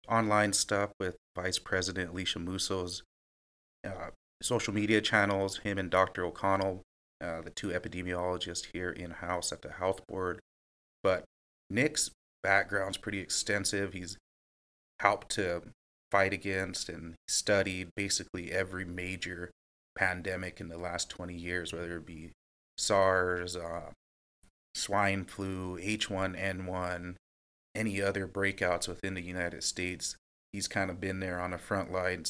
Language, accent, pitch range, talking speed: English, American, 90-100 Hz, 130 wpm